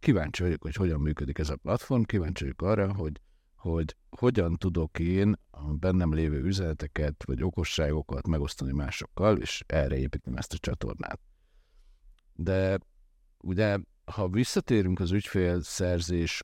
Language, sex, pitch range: Hungarian, male, 80-95 Hz